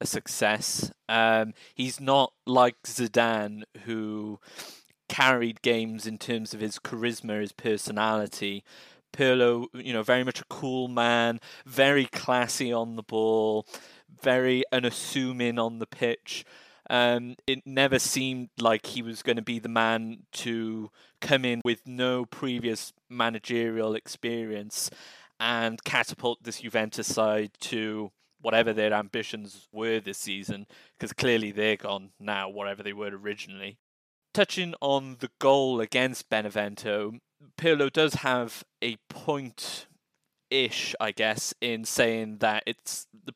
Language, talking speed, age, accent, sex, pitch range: English, 130 wpm, 20-39, British, male, 110-125 Hz